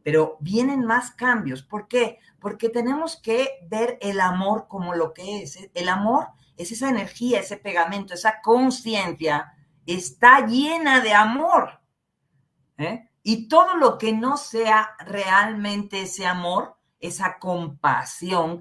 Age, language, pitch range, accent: 40-59, Spanish, 155-225 Hz, Mexican